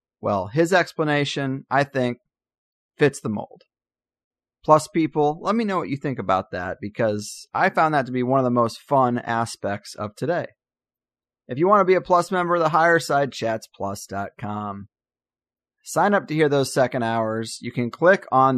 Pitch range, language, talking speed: 125-175 Hz, English, 185 wpm